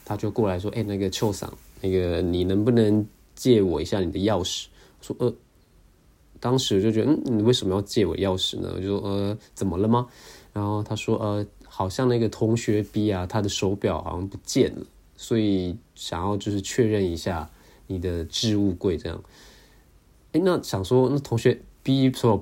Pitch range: 90-110 Hz